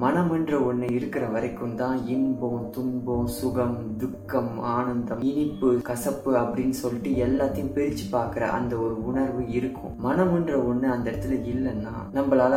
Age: 20-39